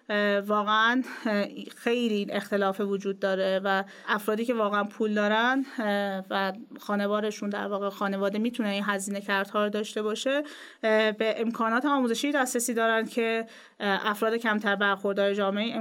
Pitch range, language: 200-230 Hz, Persian